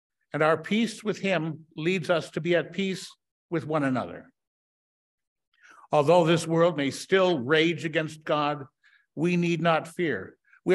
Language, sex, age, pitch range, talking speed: English, male, 60-79, 155-190 Hz, 150 wpm